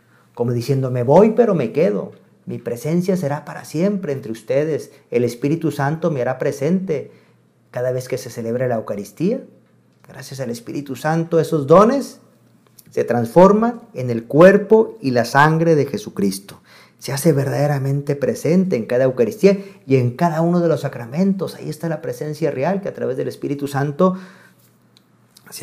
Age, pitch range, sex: 40-59, 125-175 Hz, male